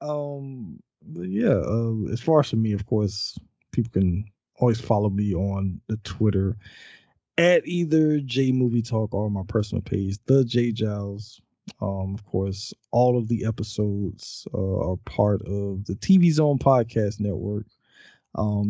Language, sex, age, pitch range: English, male, 20-39, 105-130 Hz